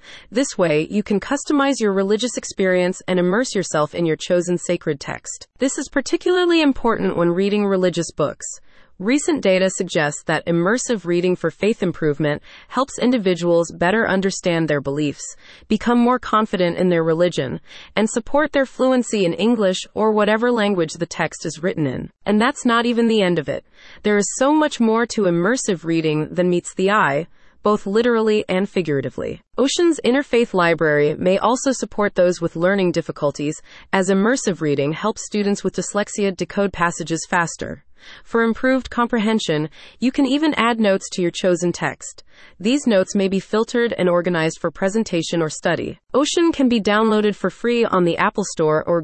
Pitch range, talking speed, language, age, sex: 170-235 Hz, 170 wpm, English, 30-49, female